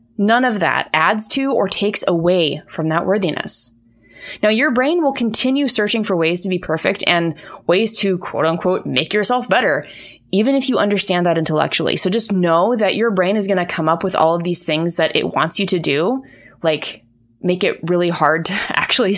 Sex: female